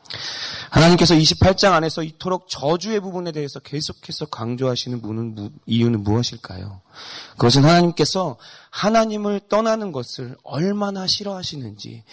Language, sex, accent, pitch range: Korean, male, native, 125-160 Hz